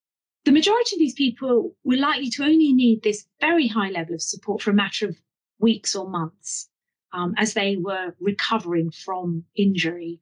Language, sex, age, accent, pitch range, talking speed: English, female, 30-49, British, 175-240 Hz, 175 wpm